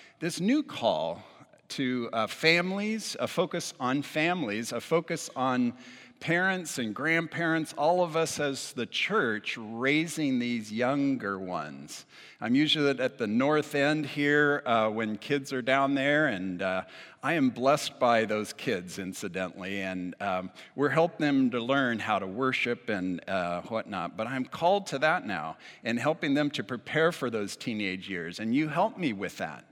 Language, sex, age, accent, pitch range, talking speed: English, male, 50-69, American, 125-175 Hz, 165 wpm